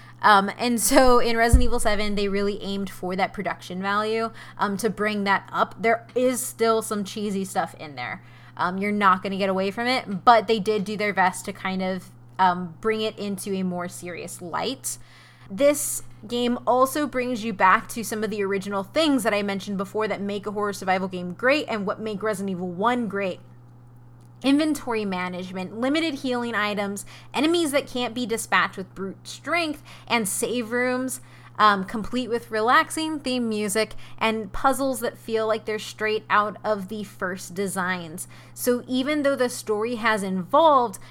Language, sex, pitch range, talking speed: English, female, 195-240 Hz, 180 wpm